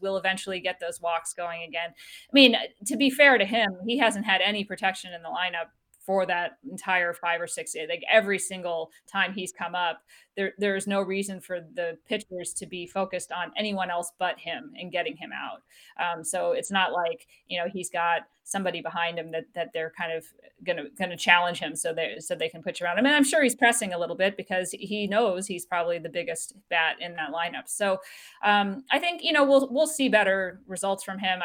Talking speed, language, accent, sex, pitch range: 220 wpm, English, American, female, 175-215 Hz